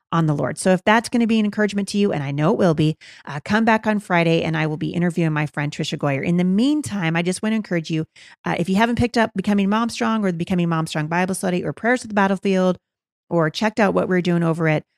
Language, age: English, 30-49